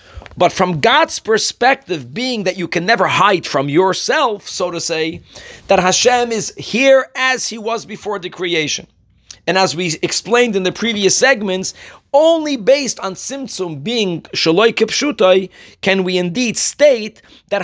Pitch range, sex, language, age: 180-235 Hz, male, English, 40-59